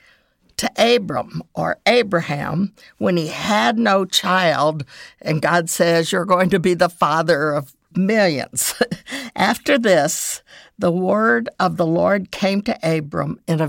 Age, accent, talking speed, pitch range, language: 60-79, American, 140 wpm, 165-215 Hz, English